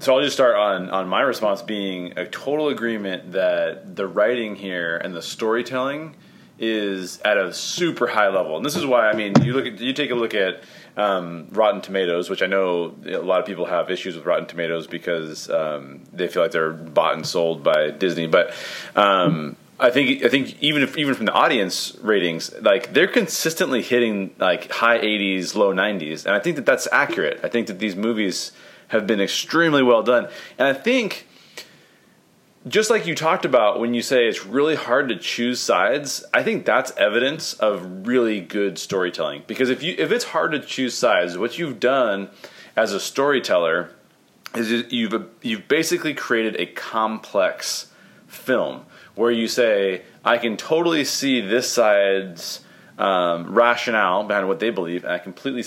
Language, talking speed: English, 180 wpm